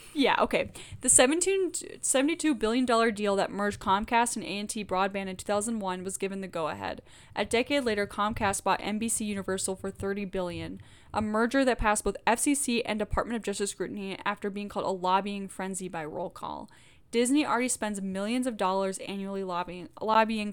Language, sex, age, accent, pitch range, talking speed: English, female, 10-29, American, 190-220 Hz, 180 wpm